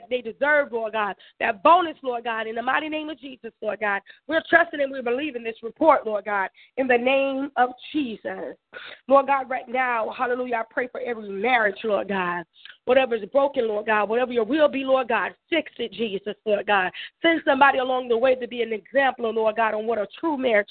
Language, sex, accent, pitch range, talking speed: English, female, American, 220-285 Hz, 215 wpm